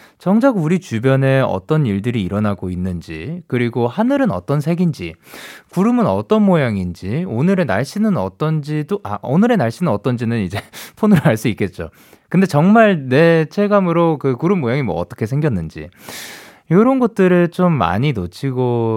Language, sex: Korean, male